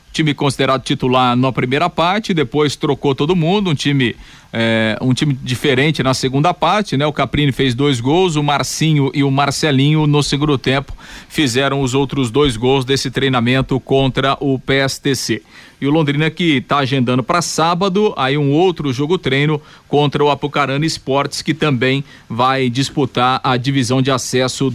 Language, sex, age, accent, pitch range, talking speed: Portuguese, male, 50-69, Brazilian, 130-150 Hz, 165 wpm